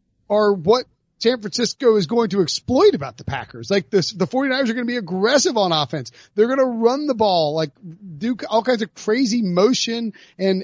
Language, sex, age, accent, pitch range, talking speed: English, male, 30-49, American, 155-200 Hz, 205 wpm